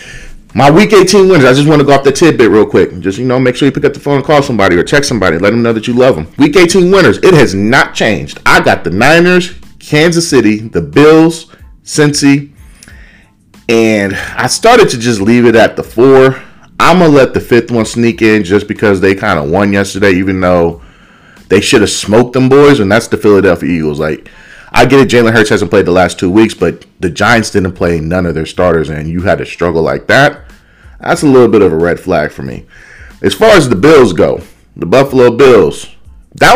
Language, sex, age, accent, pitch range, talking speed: English, male, 30-49, American, 95-145 Hz, 230 wpm